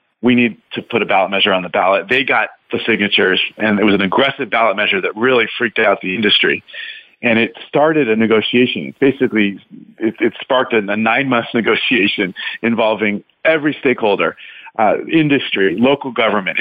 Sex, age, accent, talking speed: male, 40-59, American, 170 wpm